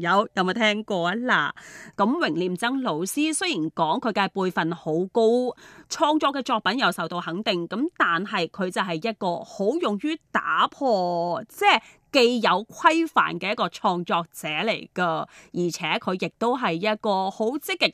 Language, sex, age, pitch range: Chinese, female, 30-49, 185-255 Hz